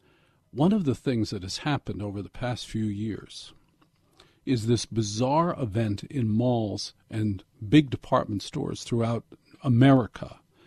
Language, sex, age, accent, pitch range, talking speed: English, male, 50-69, American, 115-150 Hz, 135 wpm